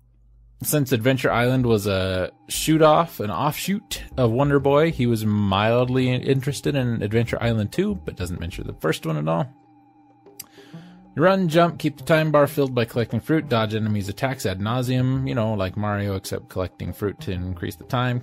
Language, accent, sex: English, American, male